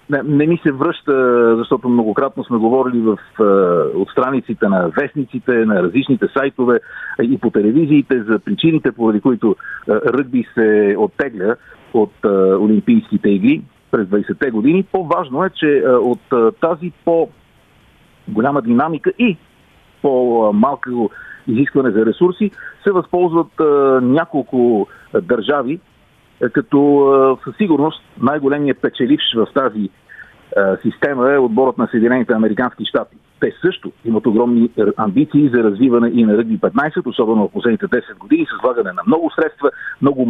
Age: 50-69